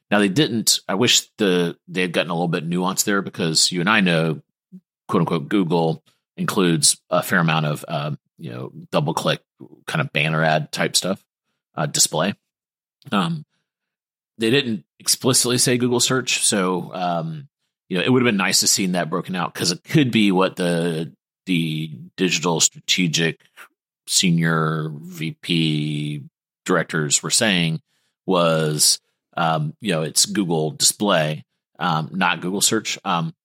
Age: 40-59